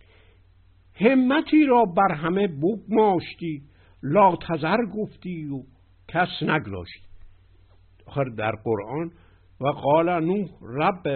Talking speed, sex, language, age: 95 wpm, male, Persian, 60-79